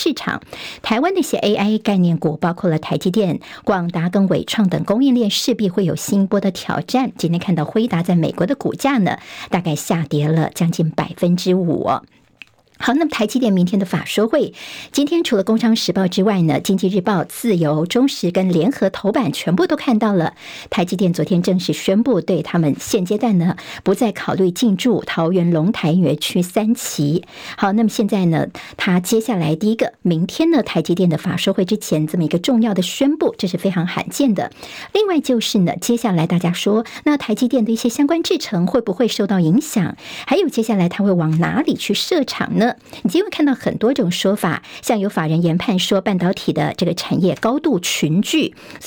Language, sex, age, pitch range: Chinese, male, 50-69, 175-240 Hz